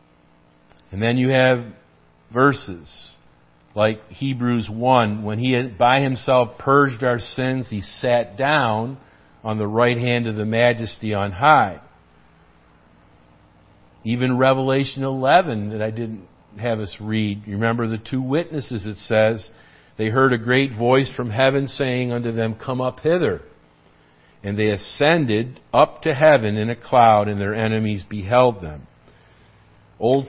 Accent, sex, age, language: American, male, 50-69, English